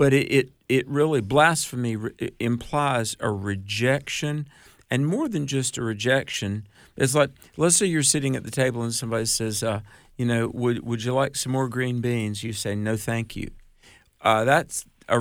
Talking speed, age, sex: 180 wpm, 50-69, male